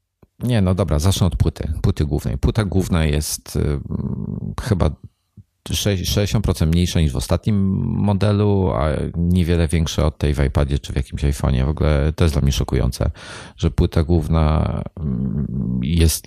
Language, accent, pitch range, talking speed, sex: Polish, native, 75-90 Hz, 150 wpm, male